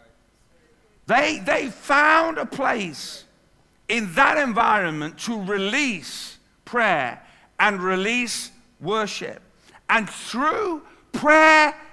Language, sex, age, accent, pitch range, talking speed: English, male, 50-69, British, 205-285 Hz, 85 wpm